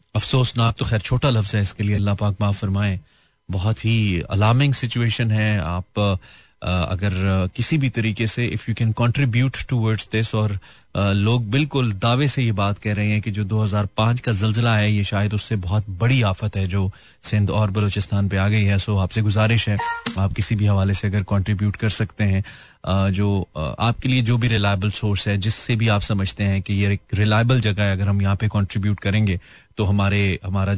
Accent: native